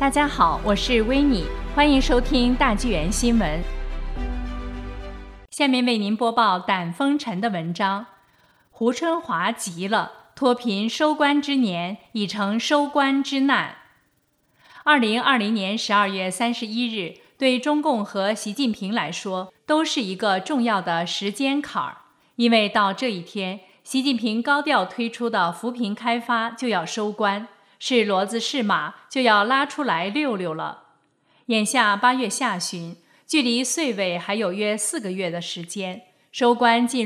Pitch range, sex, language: 195-250 Hz, female, Chinese